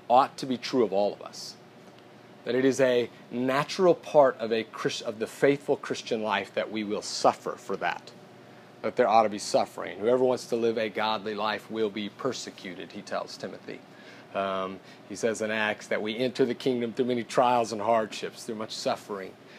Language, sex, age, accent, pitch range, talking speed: English, male, 30-49, American, 120-160 Hz, 195 wpm